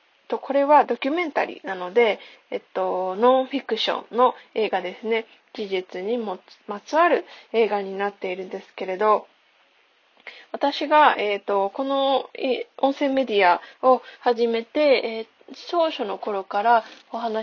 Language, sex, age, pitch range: Japanese, female, 20-39, 205-295 Hz